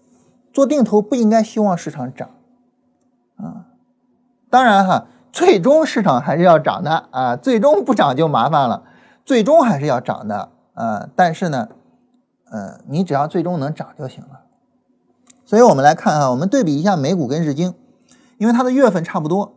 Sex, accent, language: male, native, Chinese